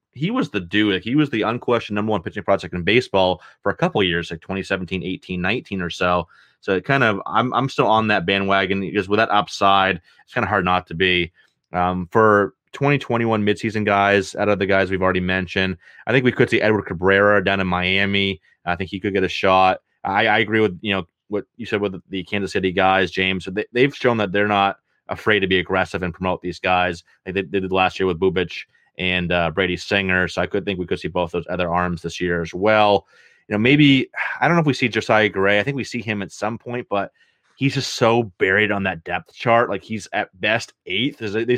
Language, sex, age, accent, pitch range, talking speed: English, male, 30-49, American, 95-110 Hz, 240 wpm